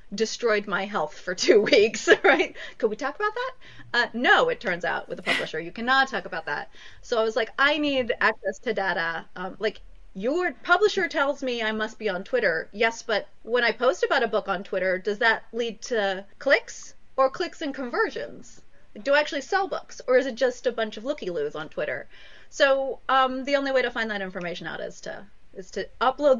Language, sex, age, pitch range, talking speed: English, female, 30-49, 195-270 Hz, 215 wpm